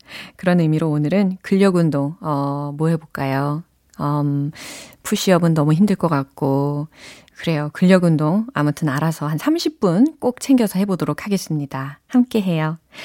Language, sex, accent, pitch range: Korean, female, native, 155-255 Hz